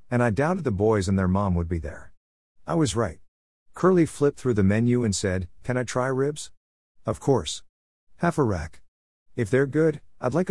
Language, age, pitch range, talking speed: English, 50-69, 85-140 Hz, 200 wpm